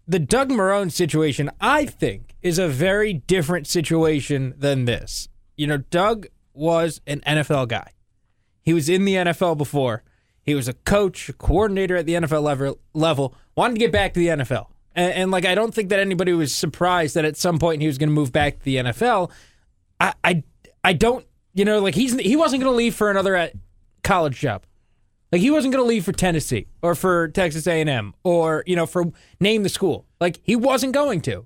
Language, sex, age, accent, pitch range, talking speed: English, male, 20-39, American, 150-205 Hz, 205 wpm